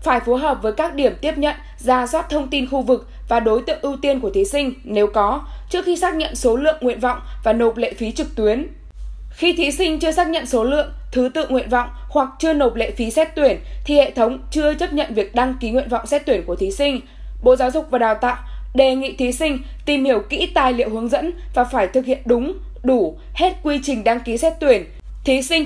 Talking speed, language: 245 wpm, Vietnamese